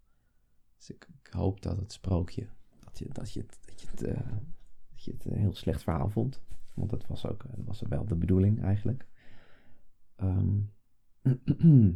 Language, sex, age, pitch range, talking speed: Dutch, male, 30-49, 95-115 Hz, 125 wpm